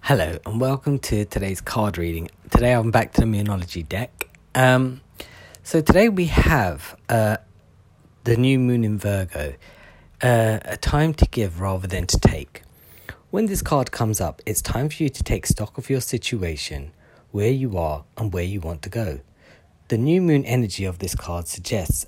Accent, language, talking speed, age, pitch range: British, English, 180 wpm, 40-59, 95-125 Hz